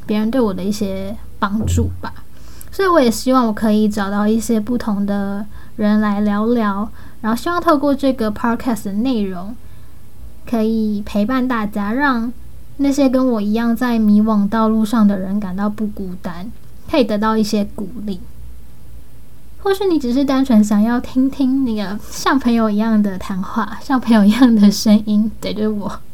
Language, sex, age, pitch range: Chinese, female, 10-29, 210-250 Hz